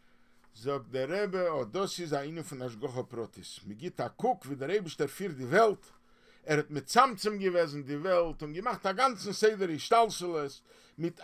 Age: 50-69